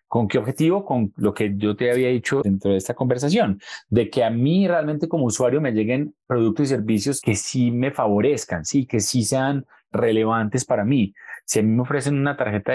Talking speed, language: 205 wpm, Spanish